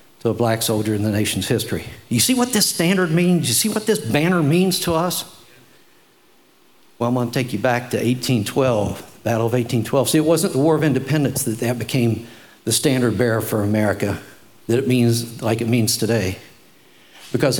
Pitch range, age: 115-155 Hz, 60-79